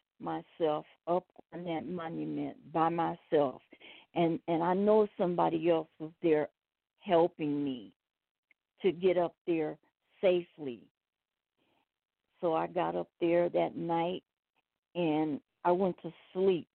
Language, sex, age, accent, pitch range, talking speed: English, female, 50-69, American, 165-190 Hz, 120 wpm